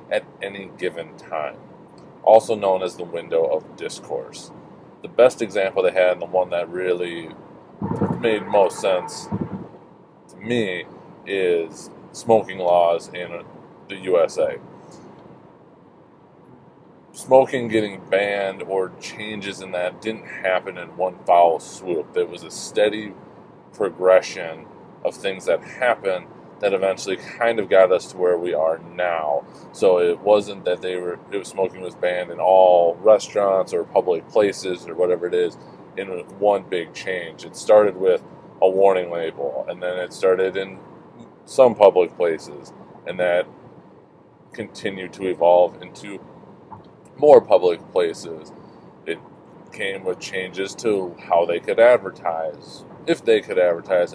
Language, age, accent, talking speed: English, 30-49, American, 140 wpm